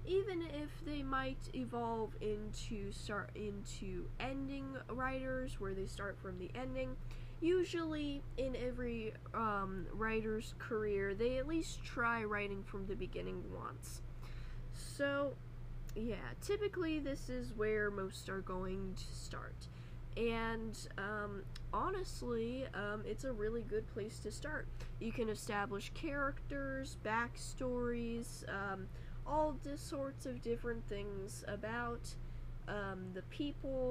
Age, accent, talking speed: 10-29, American, 120 wpm